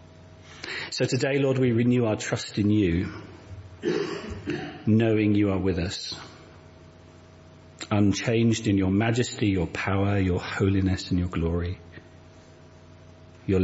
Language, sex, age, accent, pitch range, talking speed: English, male, 40-59, British, 90-110 Hz, 115 wpm